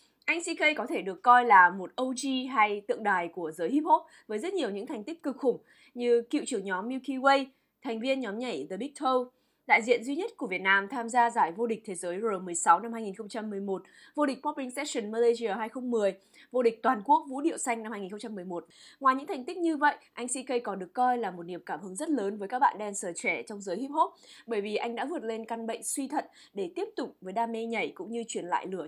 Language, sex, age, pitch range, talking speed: Vietnamese, female, 20-39, 195-270 Hz, 245 wpm